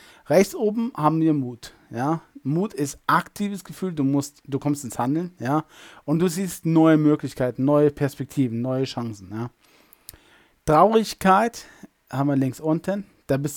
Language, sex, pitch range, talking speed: German, male, 130-165 Hz, 150 wpm